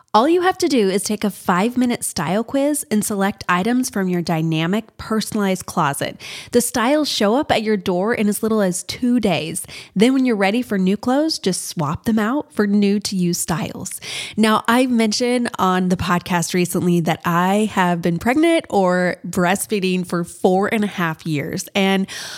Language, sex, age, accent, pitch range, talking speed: English, female, 20-39, American, 185-245 Hz, 180 wpm